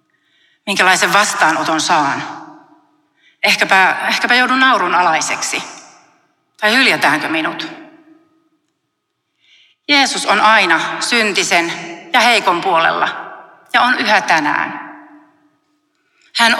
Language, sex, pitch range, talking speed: Finnish, female, 180-265 Hz, 85 wpm